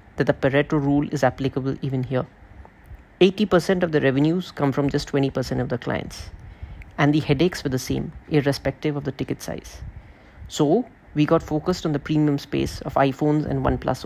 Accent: Indian